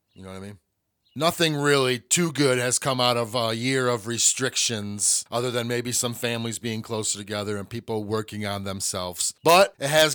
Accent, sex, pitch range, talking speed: American, male, 110-140 Hz, 195 wpm